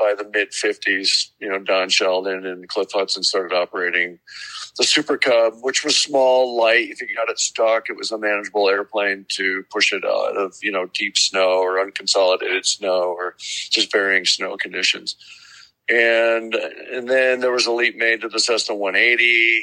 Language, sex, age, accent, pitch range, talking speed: English, male, 50-69, American, 100-120 Hz, 185 wpm